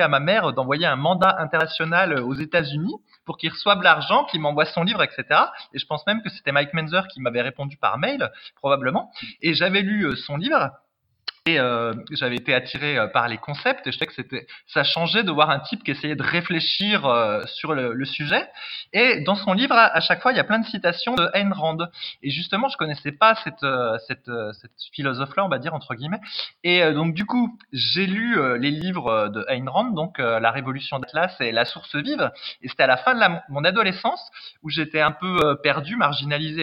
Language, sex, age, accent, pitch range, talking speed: French, male, 20-39, French, 145-200 Hz, 225 wpm